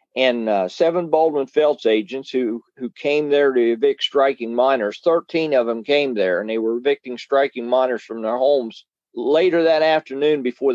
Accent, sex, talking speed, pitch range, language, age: American, male, 175 wpm, 125-170 Hz, English, 40-59